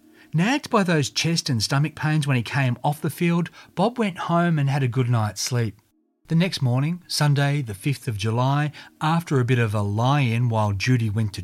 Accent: Australian